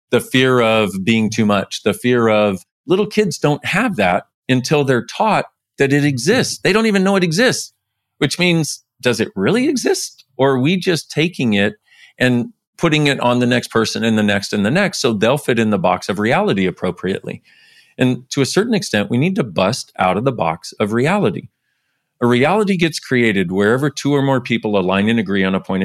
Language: English